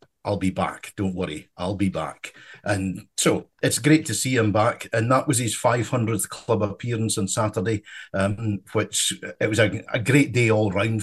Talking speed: 190 wpm